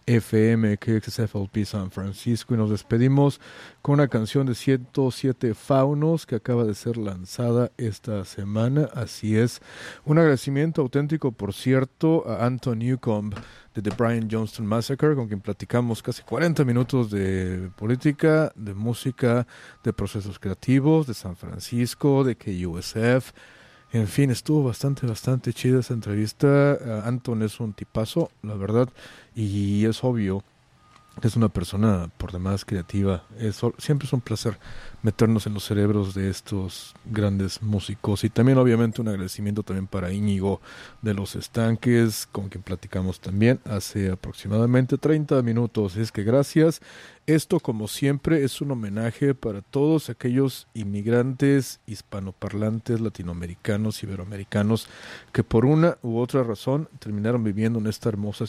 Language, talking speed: English, 140 wpm